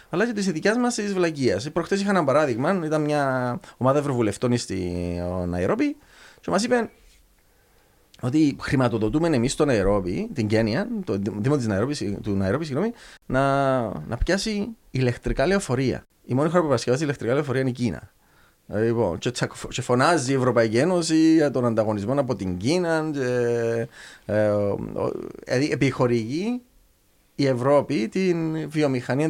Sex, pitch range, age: male, 110-165 Hz, 30-49